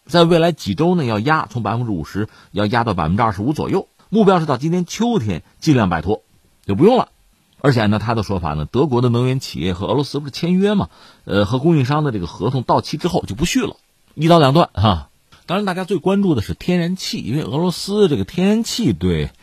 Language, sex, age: Chinese, male, 50-69